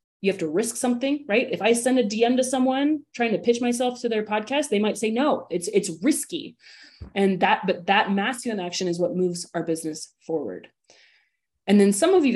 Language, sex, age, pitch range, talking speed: English, female, 30-49, 170-220 Hz, 215 wpm